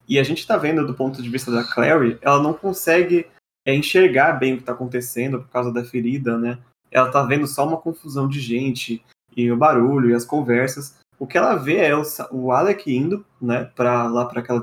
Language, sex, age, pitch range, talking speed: Portuguese, male, 20-39, 125-145 Hz, 220 wpm